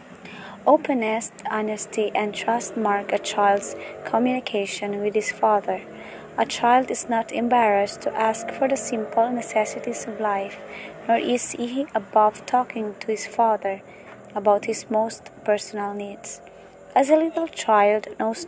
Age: 20-39